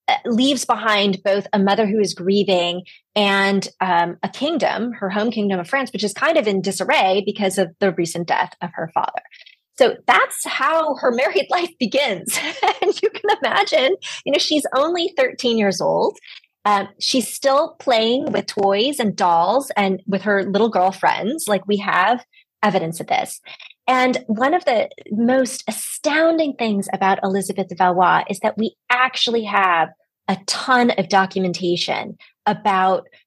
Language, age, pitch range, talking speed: English, 30-49, 195-265 Hz, 160 wpm